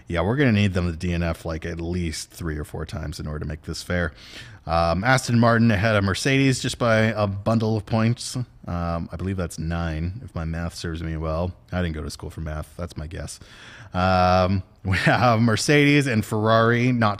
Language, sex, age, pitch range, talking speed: English, male, 30-49, 90-120 Hz, 215 wpm